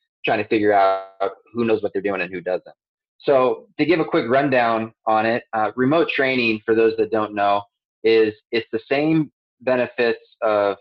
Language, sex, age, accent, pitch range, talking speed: English, male, 20-39, American, 105-125 Hz, 190 wpm